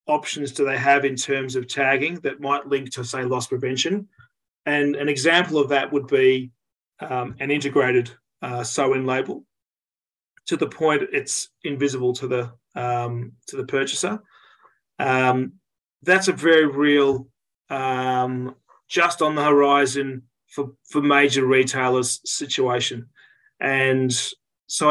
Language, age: English, 30-49